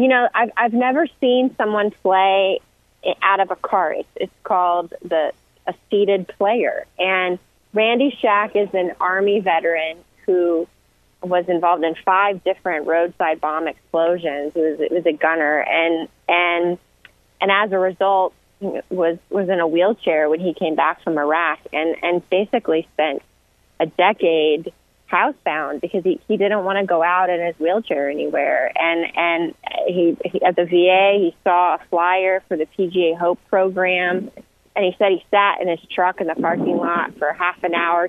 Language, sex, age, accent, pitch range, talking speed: English, female, 20-39, American, 170-205 Hz, 170 wpm